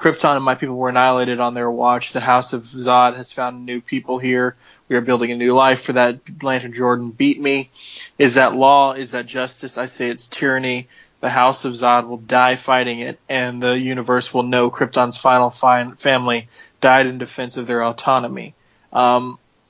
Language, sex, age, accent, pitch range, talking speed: English, male, 20-39, American, 125-145 Hz, 190 wpm